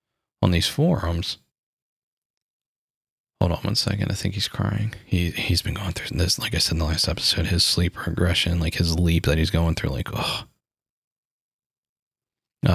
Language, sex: English, male